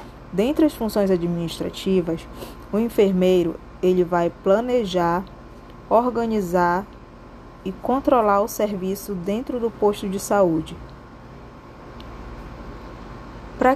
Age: 20-39